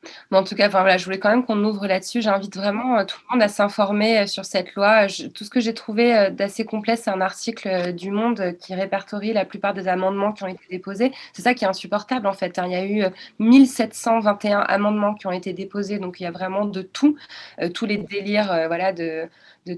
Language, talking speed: French, 215 wpm